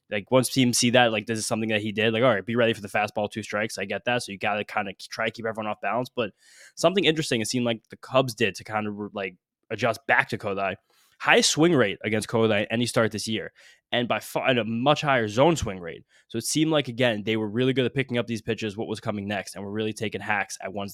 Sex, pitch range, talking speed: male, 105-125 Hz, 280 wpm